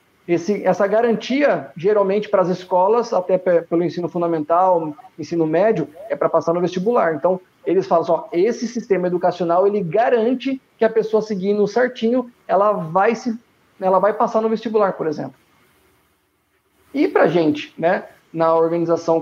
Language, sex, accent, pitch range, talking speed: Portuguese, male, Brazilian, 180-240 Hz, 155 wpm